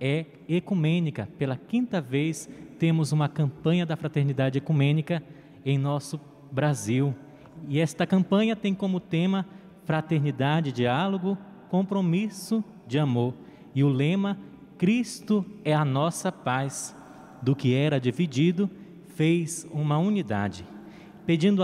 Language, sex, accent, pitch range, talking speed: Portuguese, male, Brazilian, 140-185 Hz, 115 wpm